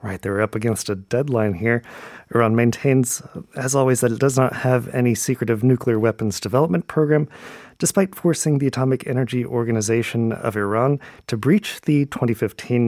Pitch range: 110-135 Hz